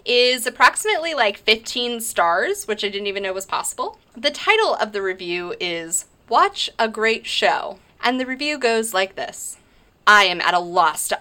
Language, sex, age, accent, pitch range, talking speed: English, female, 20-39, American, 180-255 Hz, 180 wpm